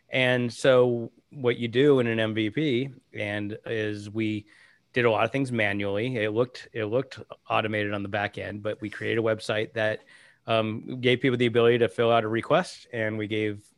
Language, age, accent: English, 30-49, American